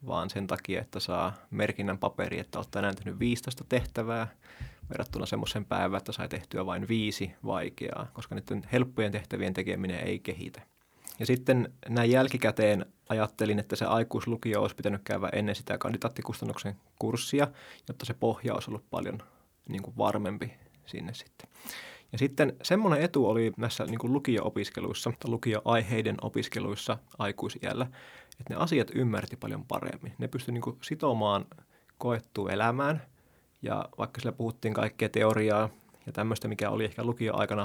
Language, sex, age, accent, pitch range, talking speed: Finnish, male, 20-39, native, 105-125 Hz, 145 wpm